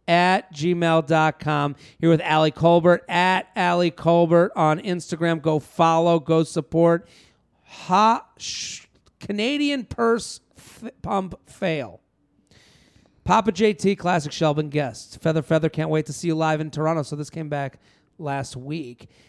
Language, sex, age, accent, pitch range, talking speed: English, male, 40-59, American, 155-185 Hz, 135 wpm